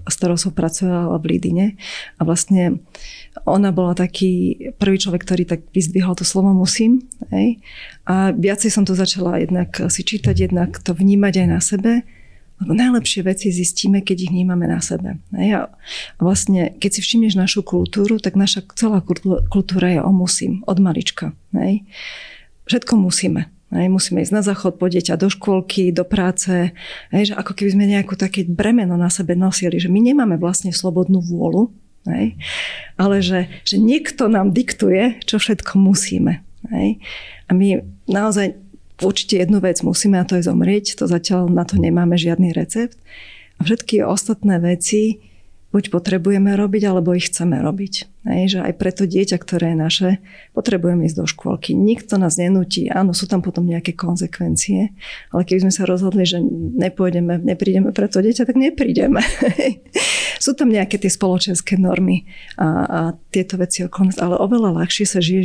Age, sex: 30-49, female